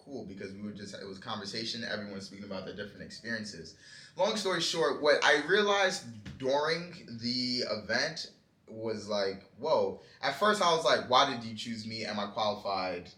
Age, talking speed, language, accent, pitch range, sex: 20-39, 185 wpm, English, American, 100-125 Hz, male